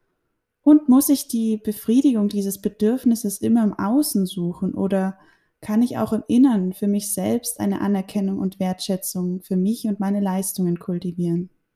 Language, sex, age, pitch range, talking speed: German, female, 20-39, 190-220 Hz, 155 wpm